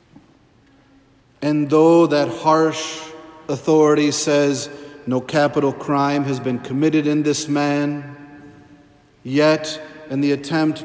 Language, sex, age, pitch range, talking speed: English, male, 50-69, 130-150 Hz, 105 wpm